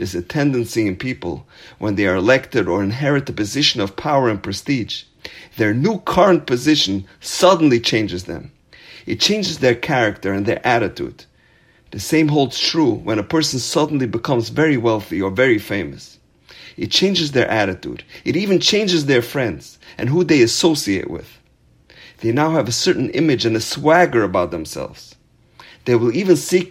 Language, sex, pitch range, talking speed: English, male, 105-155 Hz, 165 wpm